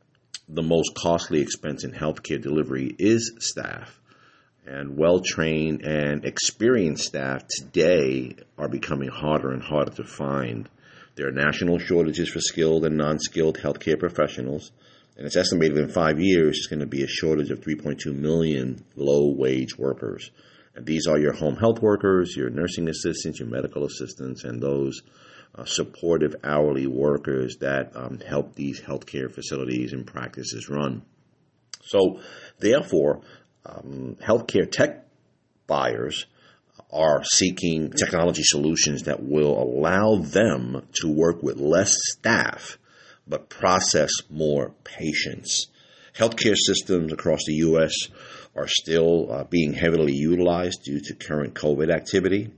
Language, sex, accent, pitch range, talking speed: English, male, American, 70-85 Hz, 135 wpm